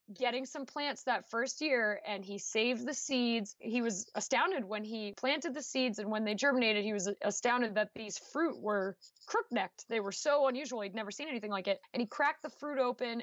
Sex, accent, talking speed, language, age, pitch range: female, American, 215 wpm, English, 20-39, 210-265 Hz